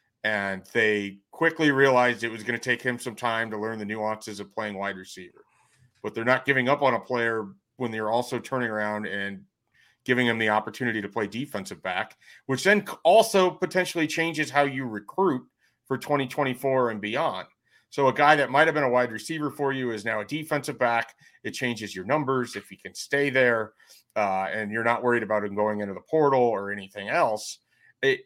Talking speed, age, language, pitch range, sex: 200 wpm, 40-59, English, 110-135 Hz, male